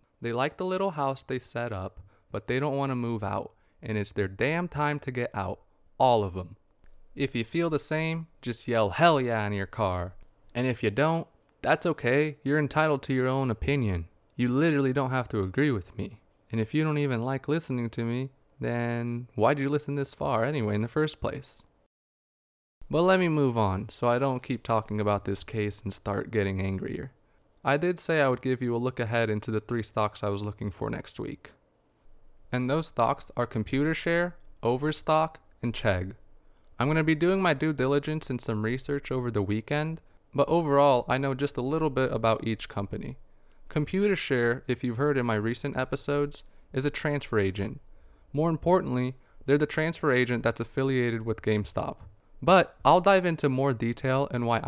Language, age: English, 20-39